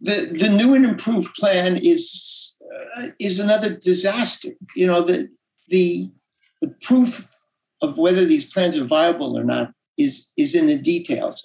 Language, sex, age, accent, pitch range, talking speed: English, male, 60-79, American, 185-305 Hz, 155 wpm